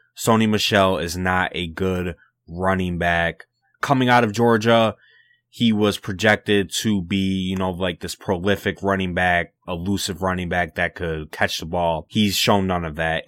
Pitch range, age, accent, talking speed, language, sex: 90-105 Hz, 20-39, American, 165 wpm, English, male